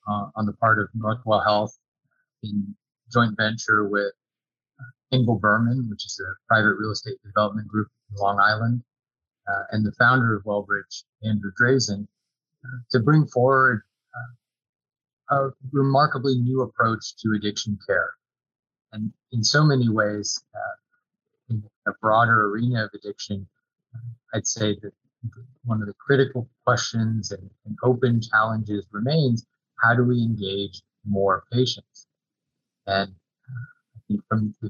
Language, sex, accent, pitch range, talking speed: English, male, American, 105-125 Hz, 140 wpm